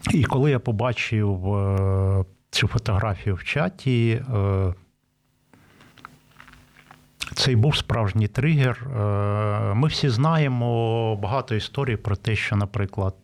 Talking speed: 95 wpm